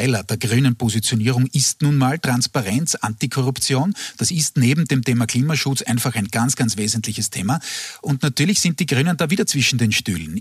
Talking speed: 165 wpm